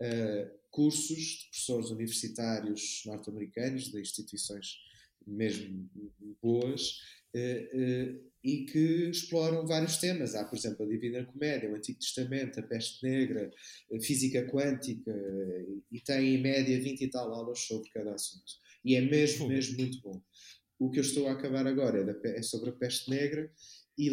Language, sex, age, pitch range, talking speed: Portuguese, male, 20-39, 115-140 Hz, 160 wpm